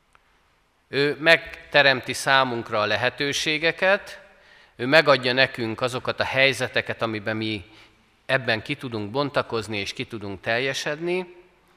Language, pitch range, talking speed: Hungarian, 105-130 Hz, 105 wpm